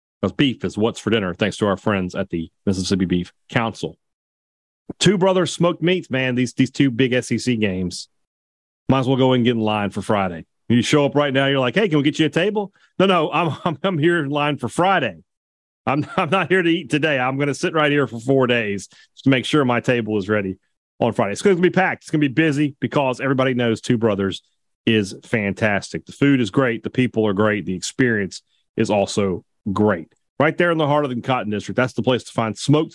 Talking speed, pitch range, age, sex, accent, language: 240 wpm, 105-150 Hz, 40-59, male, American, English